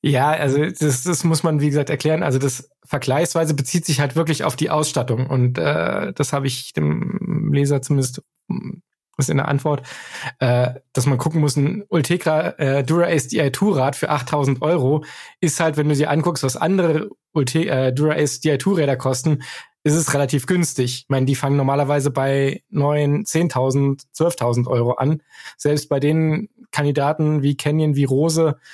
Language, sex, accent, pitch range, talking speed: German, male, German, 135-160 Hz, 165 wpm